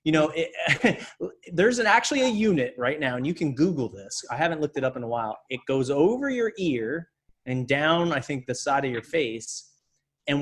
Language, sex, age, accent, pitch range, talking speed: English, male, 30-49, American, 125-165 Hz, 215 wpm